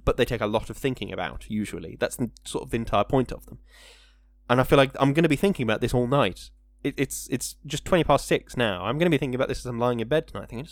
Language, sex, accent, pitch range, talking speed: English, male, British, 110-155 Hz, 295 wpm